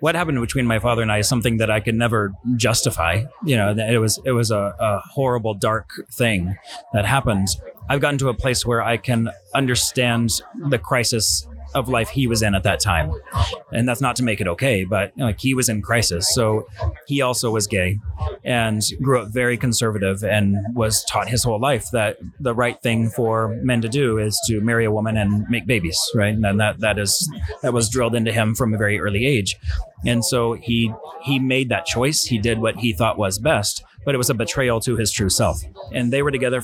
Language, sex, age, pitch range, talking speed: English, male, 30-49, 105-125 Hz, 220 wpm